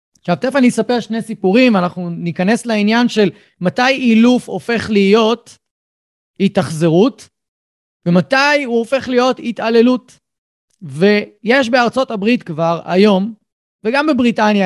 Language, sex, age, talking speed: Hebrew, male, 30-49, 110 wpm